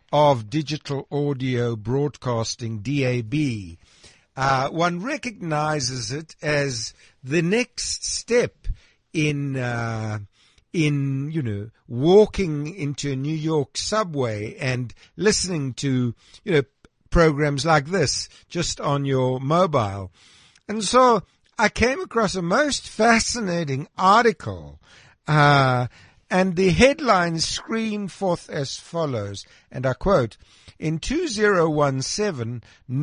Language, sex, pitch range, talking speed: English, male, 125-170 Hz, 100 wpm